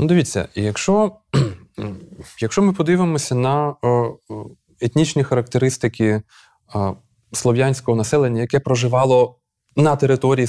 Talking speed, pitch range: 85 wpm, 105-150 Hz